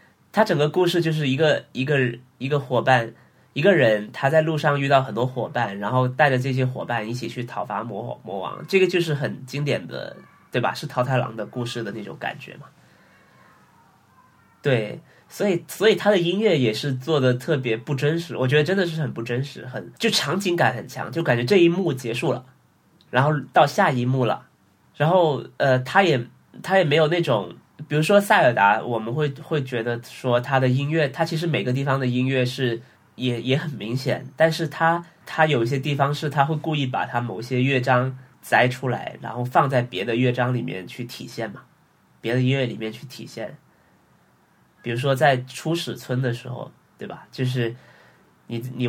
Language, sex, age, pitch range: Chinese, male, 20-39, 120-155 Hz